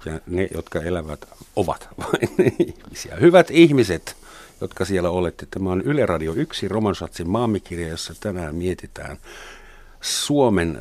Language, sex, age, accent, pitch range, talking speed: Finnish, male, 60-79, native, 80-105 Hz, 130 wpm